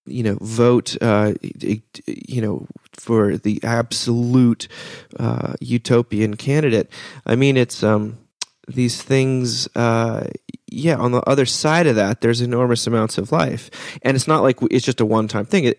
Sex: male